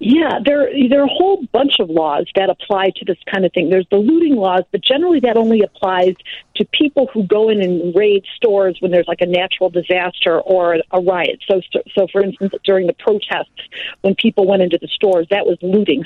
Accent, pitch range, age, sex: American, 185-225 Hz, 50-69, female